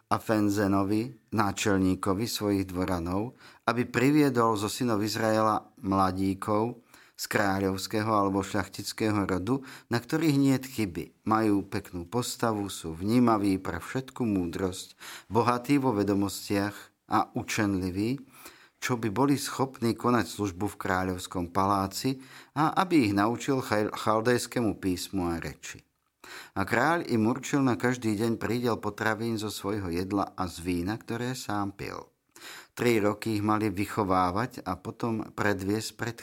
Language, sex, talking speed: Slovak, male, 130 wpm